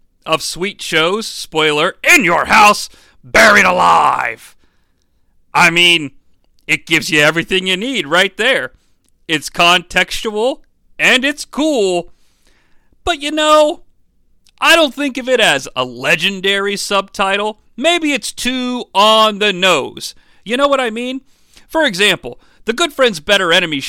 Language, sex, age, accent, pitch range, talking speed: English, male, 40-59, American, 150-240 Hz, 135 wpm